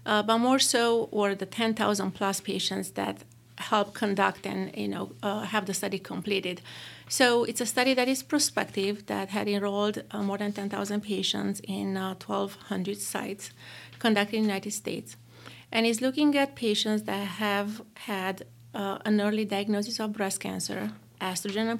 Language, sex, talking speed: English, female, 165 wpm